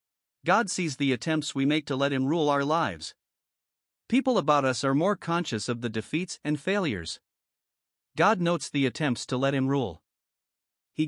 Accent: American